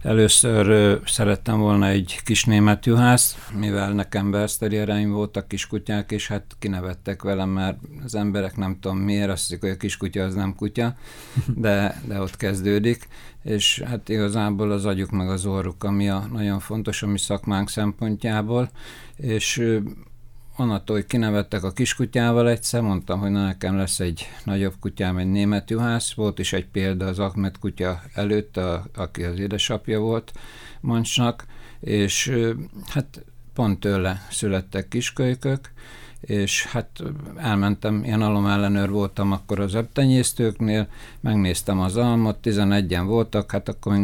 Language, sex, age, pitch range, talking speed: Hungarian, male, 60-79, 100-115 Hz, 145 wpm